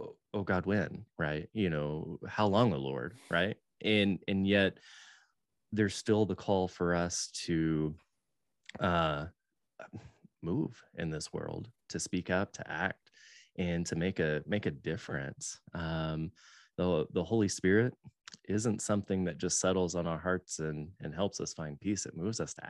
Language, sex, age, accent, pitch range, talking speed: English, male, 20-39, American, 85-105 Hz, 160 wpm